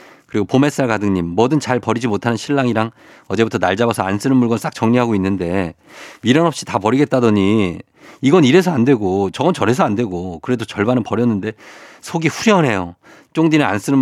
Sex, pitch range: male, 100-140 Hz